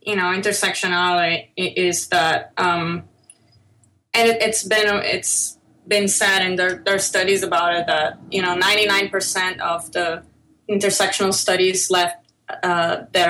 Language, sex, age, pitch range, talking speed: English, female, 20-39, 180-210 Hz, 130 wpm